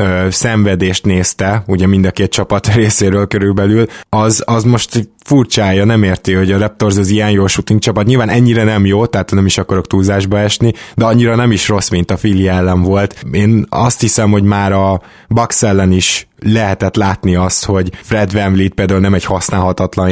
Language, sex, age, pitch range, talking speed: Hungarian, male, 20-39, 95-110 Hz, 185 wpm